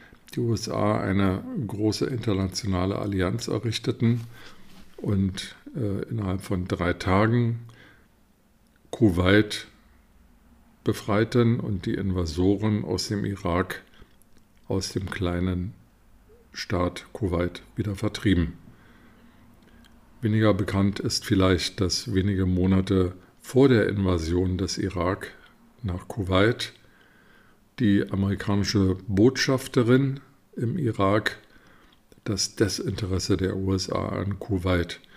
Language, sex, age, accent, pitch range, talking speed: German, male, 50-69, German, 95-110 Hz, 90 wpm